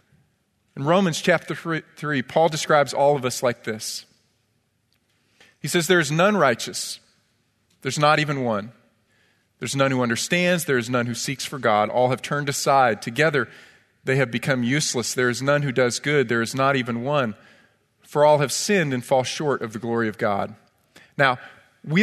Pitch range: 125-175 Hz